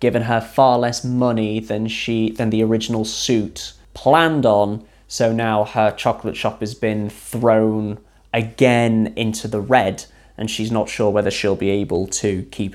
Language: English